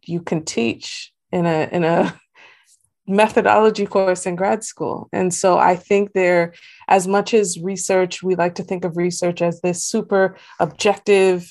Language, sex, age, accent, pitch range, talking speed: English, female, 20-39, American, 170-205 Hz, 160 wpm